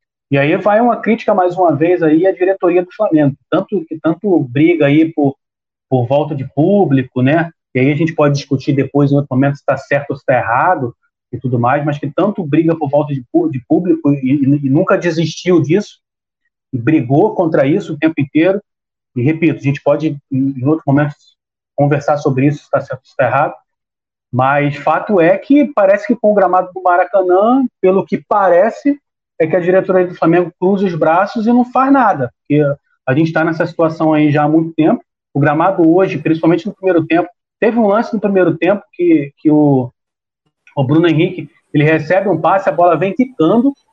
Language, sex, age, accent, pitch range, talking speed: Portuguese, male, 30-49, Brazilian, 145-195 Hz, 200 wpm